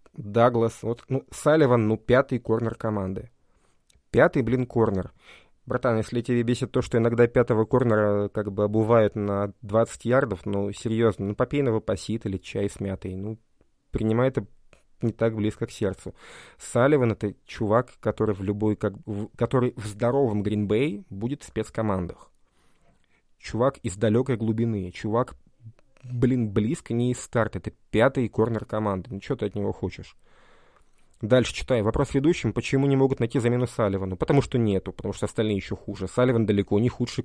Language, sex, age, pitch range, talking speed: Russian, male, 20-39, 100-120 Hz, 165 wpm